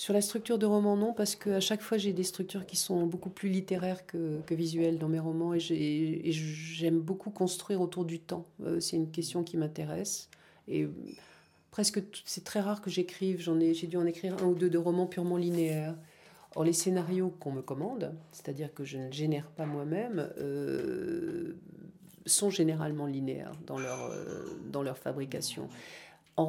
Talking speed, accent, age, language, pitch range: 190 wpm, French, 50-69, French, 150-180 Hz